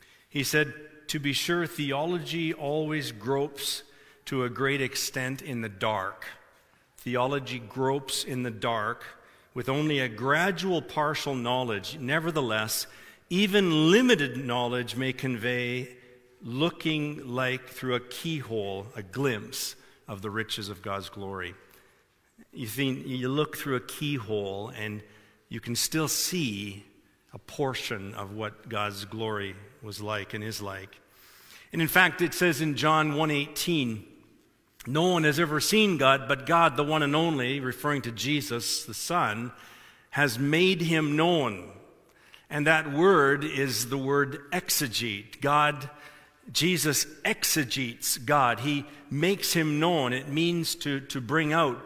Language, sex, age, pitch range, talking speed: English, male, 50-69, 120-155 Hz, 140 wpm